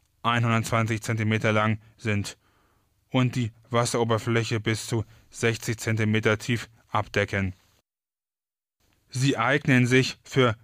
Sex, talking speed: male, 95 wpm